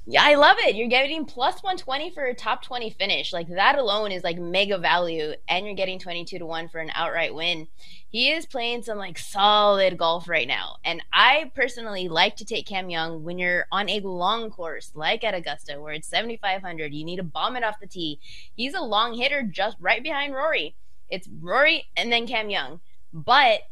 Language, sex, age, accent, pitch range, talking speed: English, female, 20-39, American, 175-245 Hz, 210 wpm